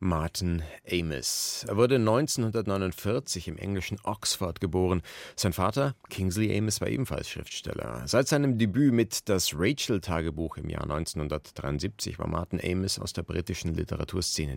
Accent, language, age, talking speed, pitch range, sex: German, German, 40-59, 130 wpm, 80-105 Hz, male